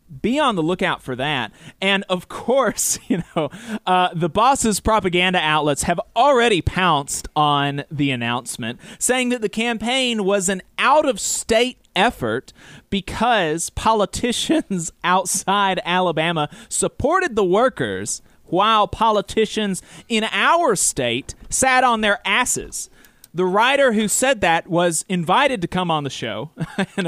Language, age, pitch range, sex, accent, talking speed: English, 30-49, 165-230 Hz, male, American, 130 wpm